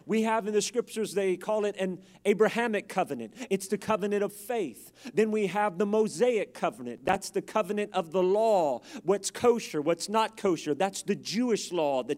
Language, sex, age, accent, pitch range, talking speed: English, male, 40-59, American, 190-220 Hz, 185 wpm